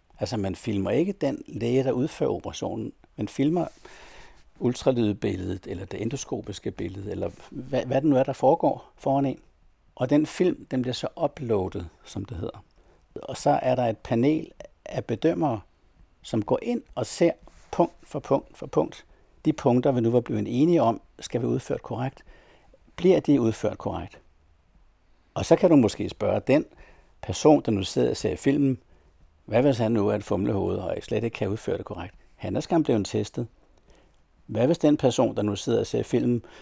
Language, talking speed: Danish, 190 wpm